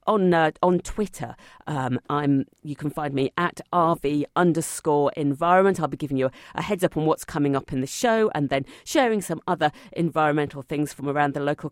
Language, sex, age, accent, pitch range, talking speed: English, female, 40-59, British, 140-190 Hz, 205 wpm